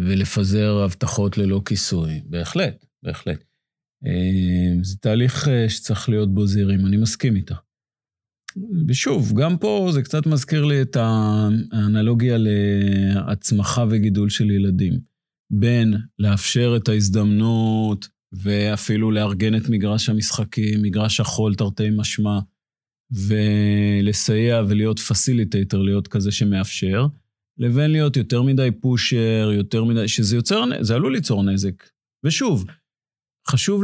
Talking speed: 110 wpm